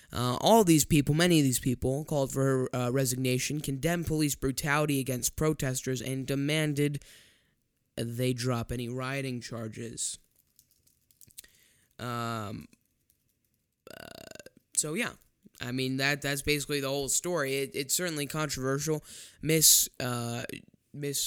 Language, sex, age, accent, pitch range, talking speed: English, male, 10-29, American, 125-155 Hz, 125 wpm